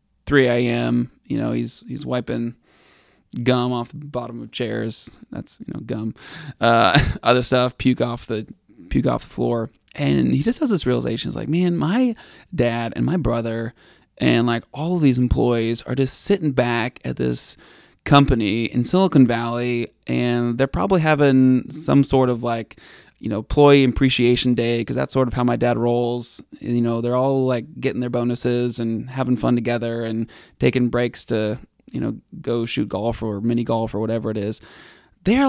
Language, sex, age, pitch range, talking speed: English, male, 20-39, 115-145 Hz, 185 wpm